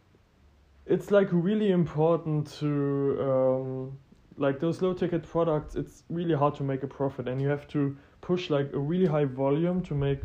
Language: English